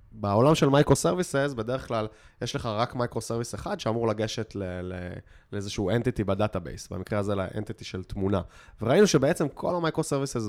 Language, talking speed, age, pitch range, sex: Hebrew, 150 wpm, 20-39, 110-155 Hz, male